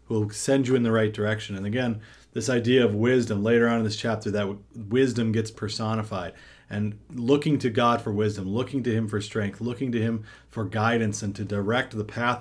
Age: 30-49